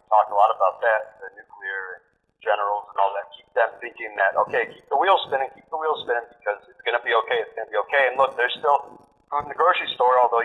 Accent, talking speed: American, 265 wpm